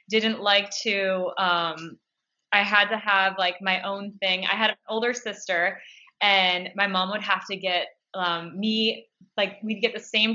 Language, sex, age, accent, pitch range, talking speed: English, female, 20-39, American, 190-220 Hz, 180 wpm